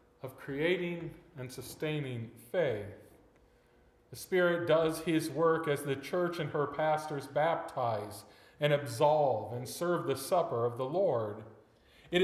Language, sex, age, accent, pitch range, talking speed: English, male, 40-59, American, 125-175 Hz, 130 wpm